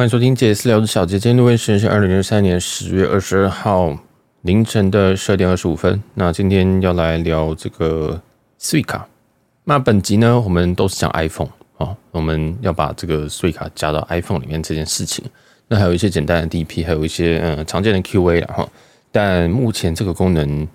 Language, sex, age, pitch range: Chinese, male, 20-39, 80-105 Hz